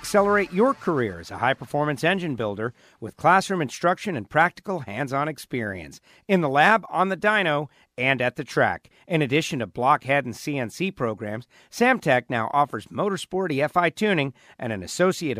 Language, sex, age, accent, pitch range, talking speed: English, male, 50-69, American, 125-185 Hz, 160 wpm